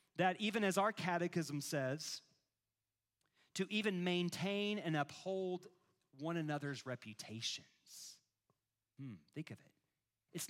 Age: 40-59